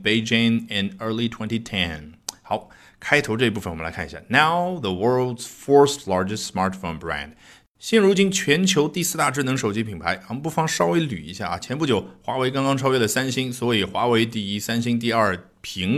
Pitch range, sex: 95-125 Hz, male